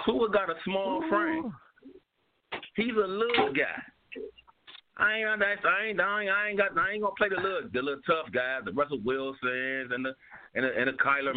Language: English